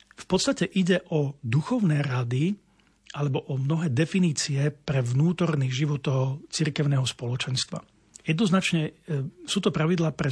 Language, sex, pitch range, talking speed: Slovak, male, 145-165 Hz, 120 wpm